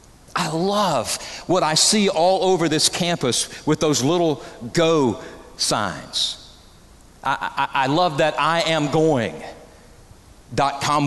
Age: 50-69